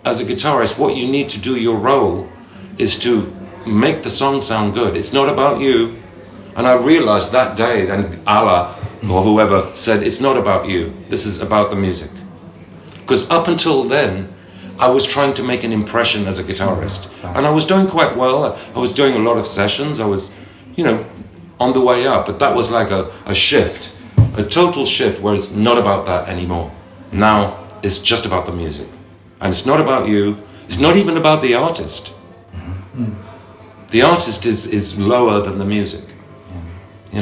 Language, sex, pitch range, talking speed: Slovak, male, 95-120 Hz, 190 wpm